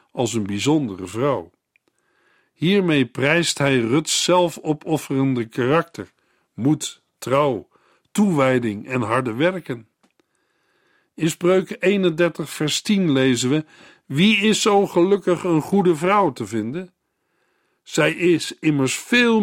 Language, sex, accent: Dutch, male, Dutch